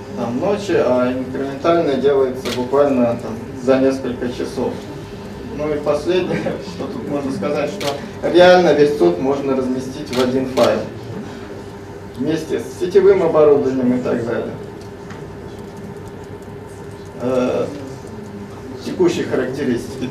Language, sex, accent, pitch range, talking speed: Russian, male, native, 125-140 Hz, 100 wpm